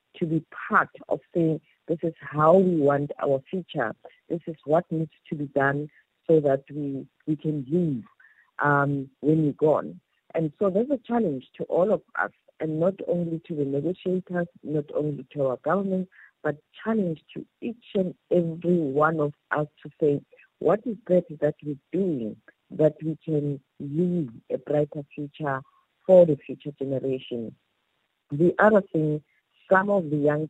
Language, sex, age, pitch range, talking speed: English, female, 50-69, 145-175 Hz, 165 wpm